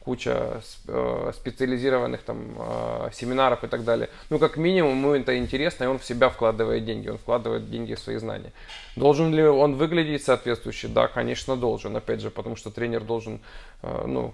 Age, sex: 20-39, male